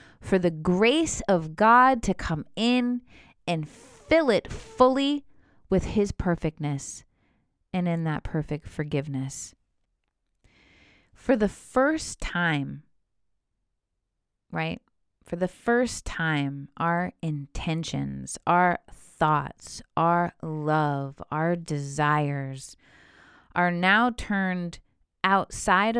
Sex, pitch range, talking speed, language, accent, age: female, 150-210 Hz, 95 wpm, English, American, 20-39